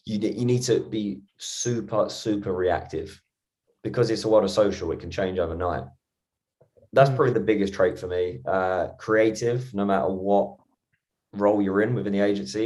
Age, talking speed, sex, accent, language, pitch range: 20-39, 175 wpm, male, British, English, 95-110 Hz